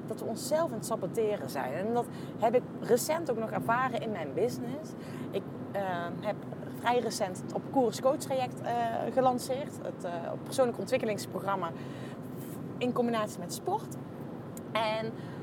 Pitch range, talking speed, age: 210-270 Hz, 150 wpm, 20-39